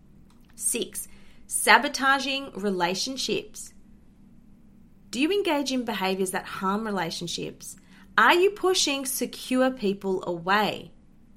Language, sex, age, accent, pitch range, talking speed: English, female, 30-49, Australian, 185-245 Hz, 90 wpm